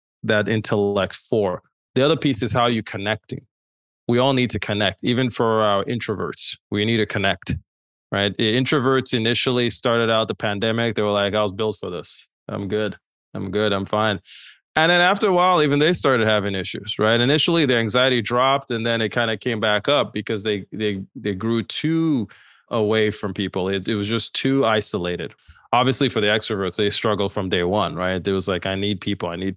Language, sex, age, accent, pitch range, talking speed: English, male, 20-39, American, 100-115 Hz, 205 wpm